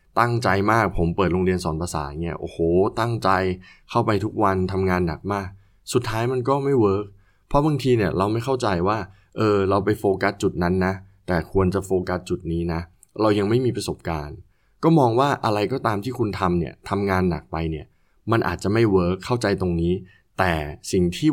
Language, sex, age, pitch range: Thai, male, 20-39, 90-110 Hz